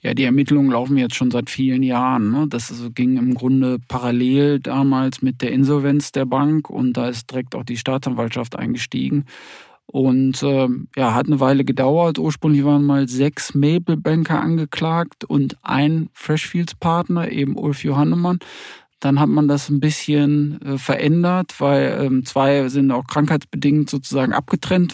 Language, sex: German, male